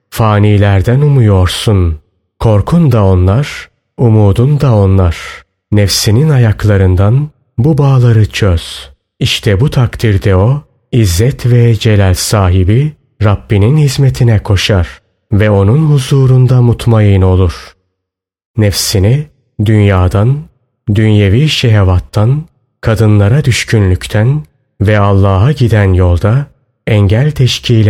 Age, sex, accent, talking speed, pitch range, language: 30-49, male, native, 90 wpm, 100-130 Hz, Turkish